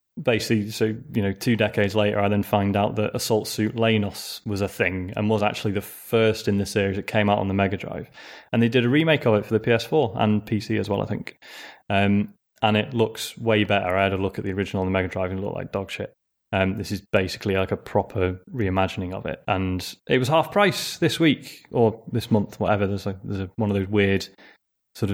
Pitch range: 100-115 Hz